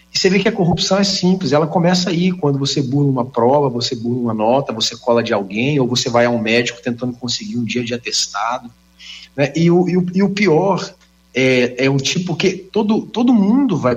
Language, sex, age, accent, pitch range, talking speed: Portuguese, male, 40-59, Brazilian, 130-195 Hz, 230 wpm